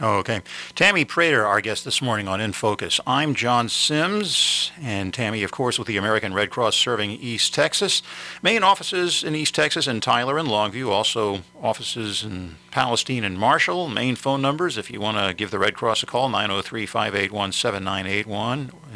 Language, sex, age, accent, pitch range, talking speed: English, male, 50-69, American, 105-135 Hz, 170 wpm